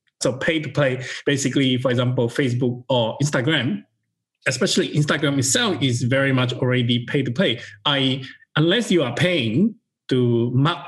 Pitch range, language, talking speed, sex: 130-170 Hz, English, 120 wpm, male